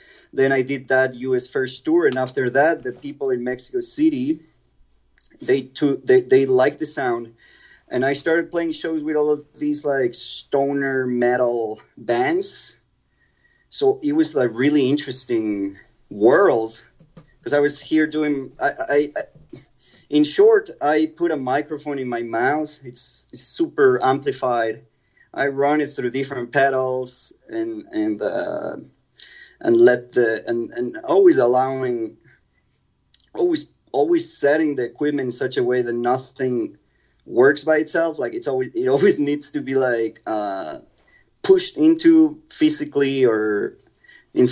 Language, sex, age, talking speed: English, male, 30-49, 145 wpm